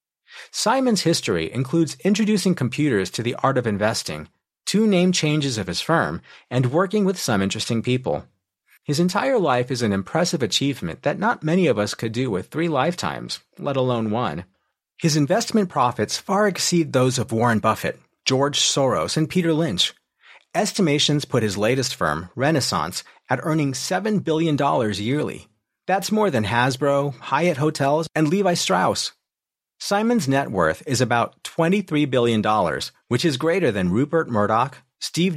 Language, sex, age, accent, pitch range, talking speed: English, male, 40-59, American, 120-165 Hz, 155 wpm